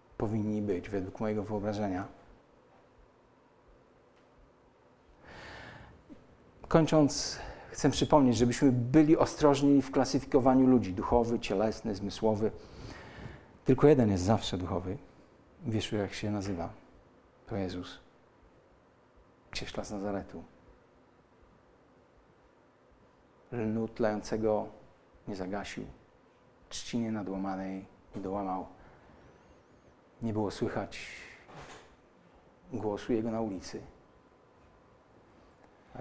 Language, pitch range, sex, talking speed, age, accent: Polish, 100-125 Hz, male, 80 wpm, 50-69, native